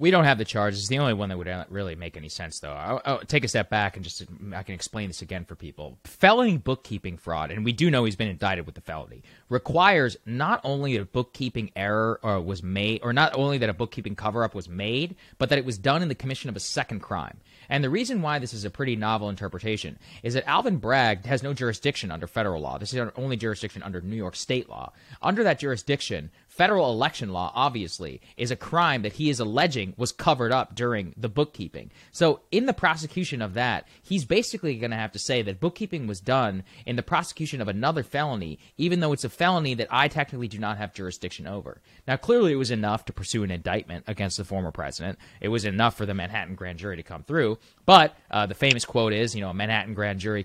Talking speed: 230 wpm